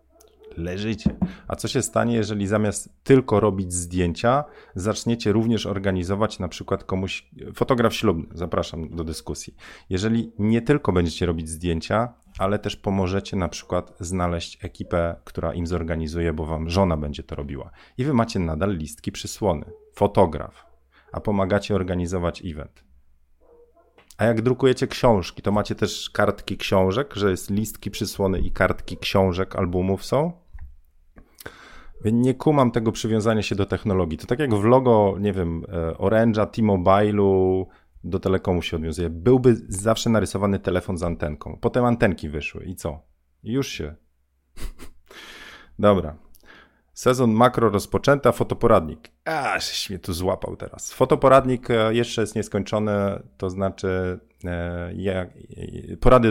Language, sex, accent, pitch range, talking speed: Polish, male, native, 85-110 Hz, 135 wpm